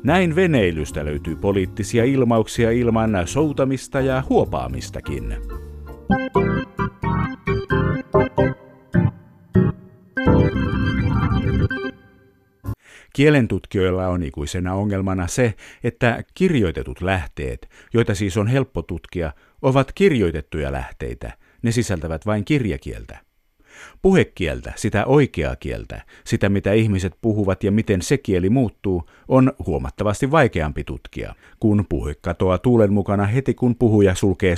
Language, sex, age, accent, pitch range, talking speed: Finnish, male, 50-69, native, 90-120 Hz, 95 wpm